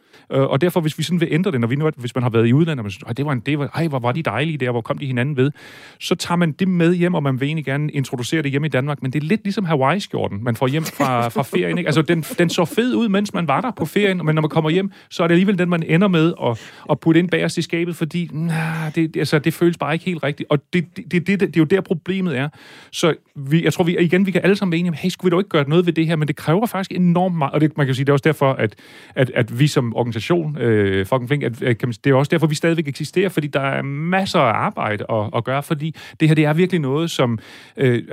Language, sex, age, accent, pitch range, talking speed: Danish, male, 30-49, native, 125-170 Hz, 300 wpm